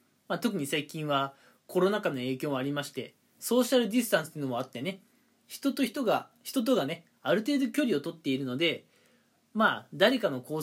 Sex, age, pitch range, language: male, 20-39, 160-265 Hz, Japanese